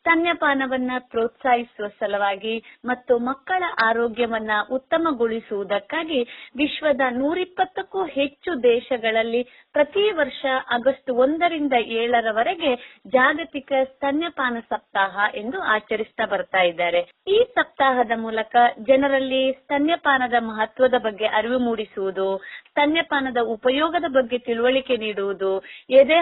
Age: 30-49